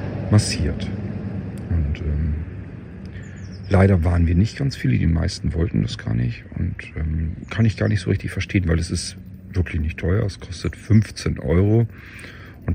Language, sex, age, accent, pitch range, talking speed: German, male, 40-59, German, 85-105 Hz, 165 wpm